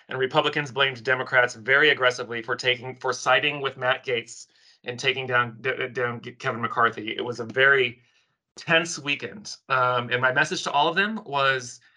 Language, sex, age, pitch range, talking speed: English, male, 30-49, 125-155 Hz, 175 wpm